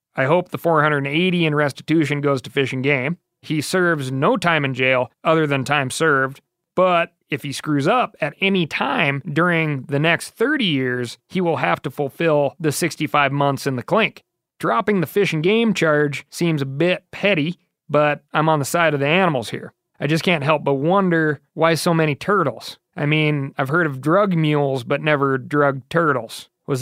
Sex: male